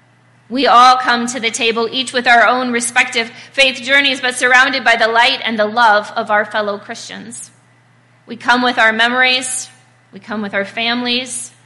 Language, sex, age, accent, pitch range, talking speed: English, female, 20-39, American, 210-255 Hz, 180 wpm